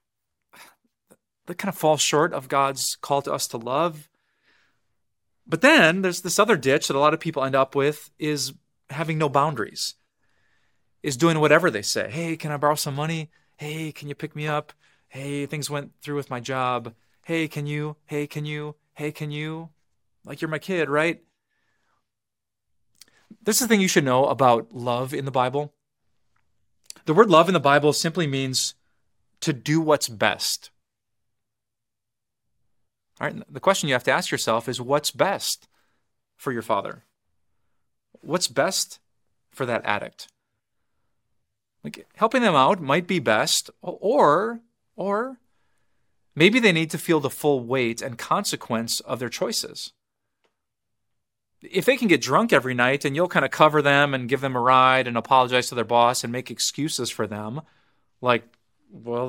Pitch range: 120-155 Hz